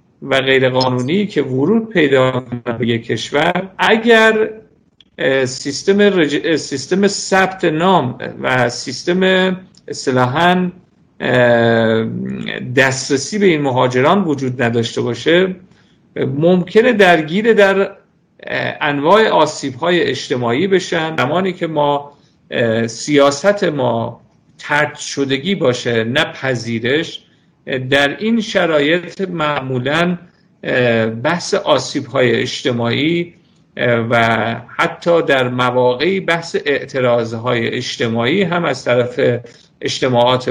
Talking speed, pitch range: 85 wpm, 125-185 Hz